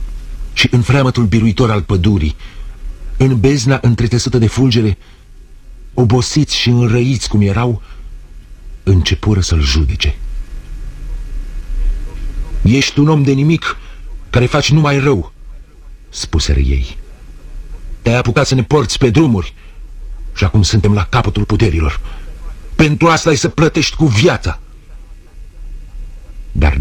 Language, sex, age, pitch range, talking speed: Romanian, male, 50-69, 80-130 Hz, 115 wpm